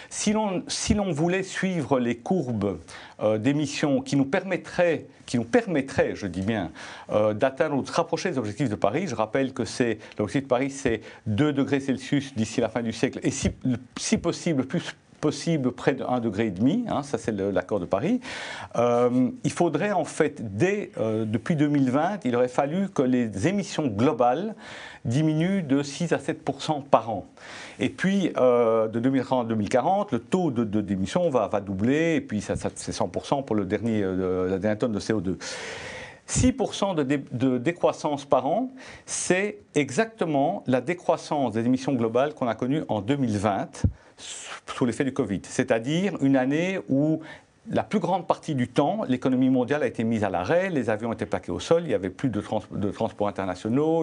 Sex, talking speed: male, 180 wpm